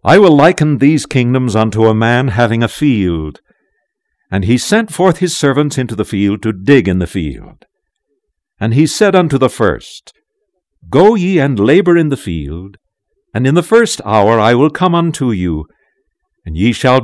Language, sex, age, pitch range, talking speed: English, male, 60-79, 105-160 Hz, 180 wpm